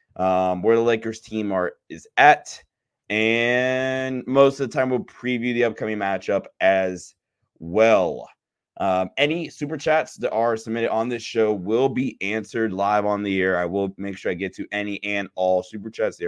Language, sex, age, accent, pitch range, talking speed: English, male, 20-39, American, 100-120 Hz, 185 wpm